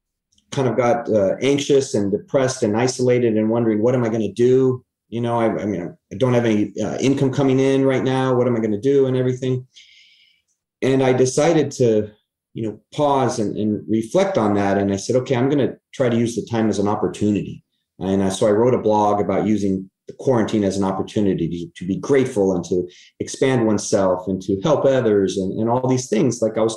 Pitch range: 100-125 Hz